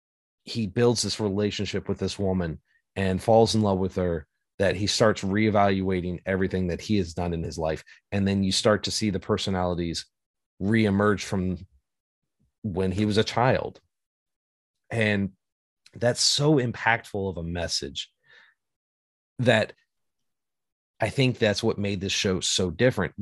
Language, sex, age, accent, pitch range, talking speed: English, male, 30-49, American, 90-110 Hz, 145 wpm